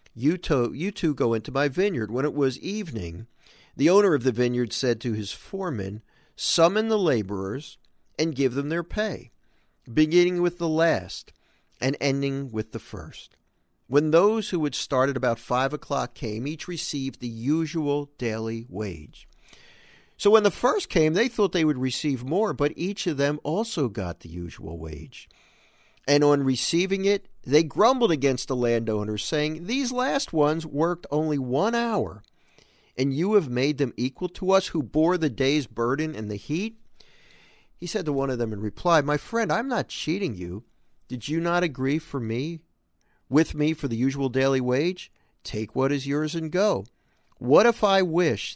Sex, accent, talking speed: male, American, 175 wpm